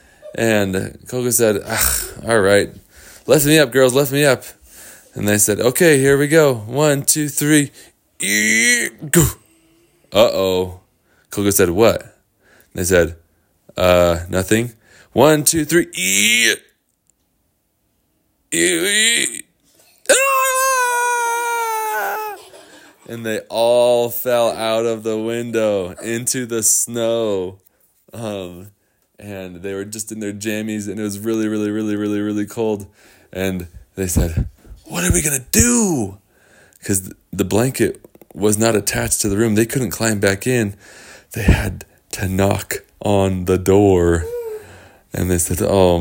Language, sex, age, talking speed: English, male, 20-39, 130 wpm